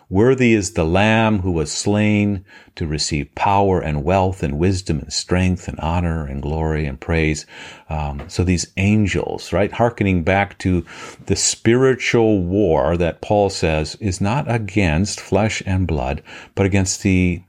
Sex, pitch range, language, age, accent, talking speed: male, 80-105 Hz, English, 50-69, American, 150 wpm